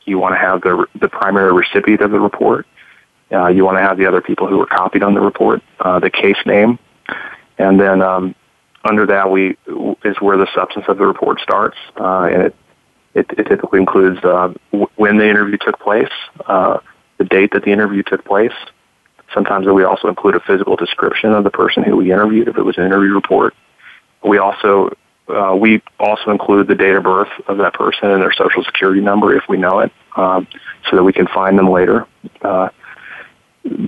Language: English